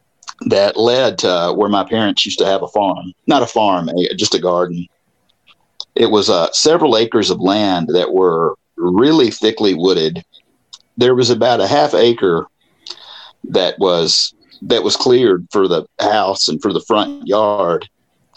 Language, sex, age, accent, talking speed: English, male, 40-59, American, 160 wpm